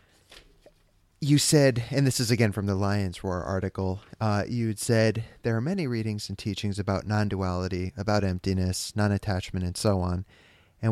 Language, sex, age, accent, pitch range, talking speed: English, male, 30-49, American, 90-110 Hz, 160 wpm